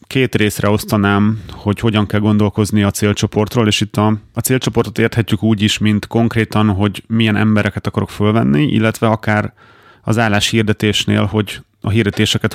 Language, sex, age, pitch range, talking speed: Hungarian, male, 30-49, 105-115 Hz, 150 wpm